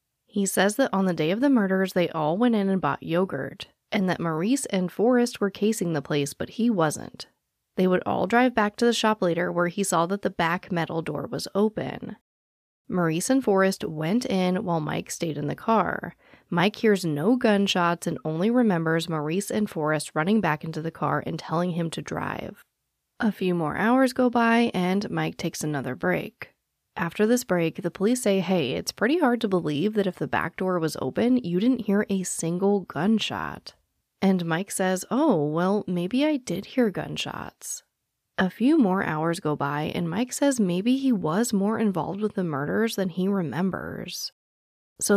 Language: English